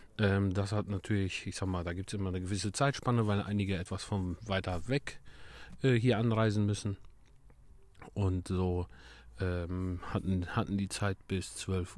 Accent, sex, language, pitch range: German, male, German, 90-110 Hz